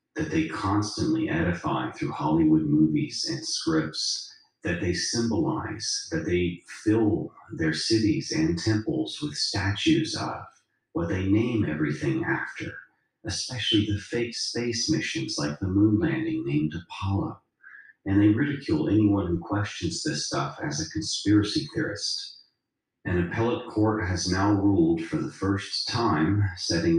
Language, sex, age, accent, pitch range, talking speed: English, male, 40-59, American, 90-150 Hz, 135 wpm